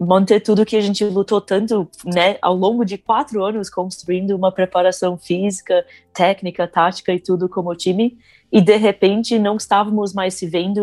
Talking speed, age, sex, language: 170 wpm, 20-39, female, Portuguese